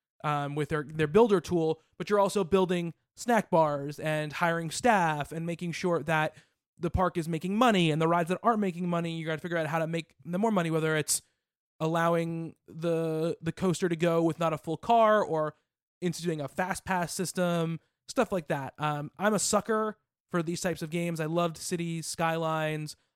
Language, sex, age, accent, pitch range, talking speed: English, male, 20-39, American, 155-180 Hz, 200 wpm